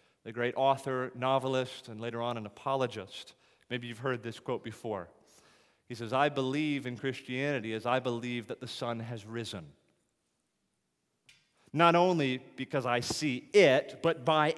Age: 30-49